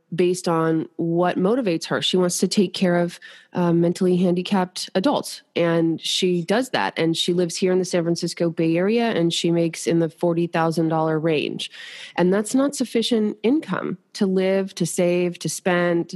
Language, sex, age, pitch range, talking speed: English, female, 20-39, 175-205 Hz, 175 wpm